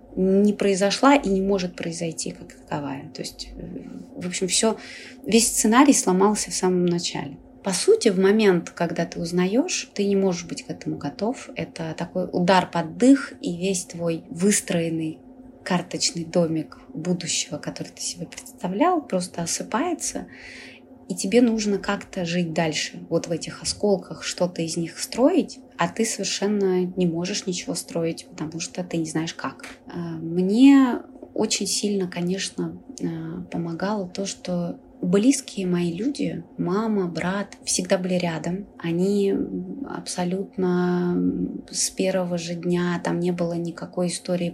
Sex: female